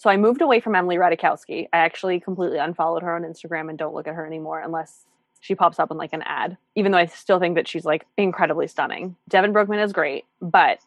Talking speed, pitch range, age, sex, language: 235 wpm, 165-200 Hz, 20-39, female, English